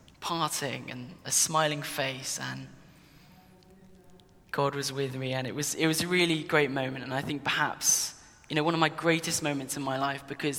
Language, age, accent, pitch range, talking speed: English, 10-29, British, 135-160 Hz, 195 wpm